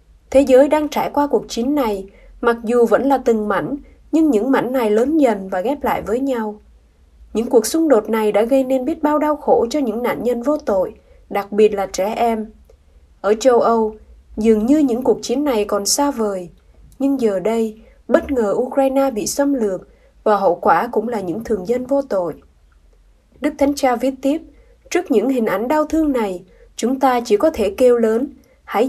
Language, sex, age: Vietnamese, female, 20-39